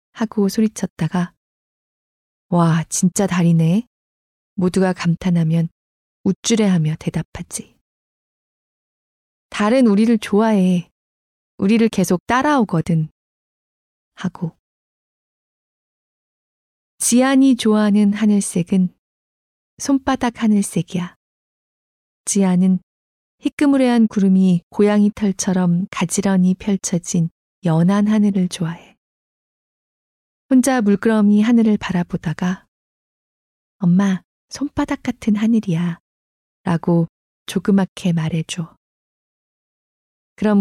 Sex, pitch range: female, 170-215 Hz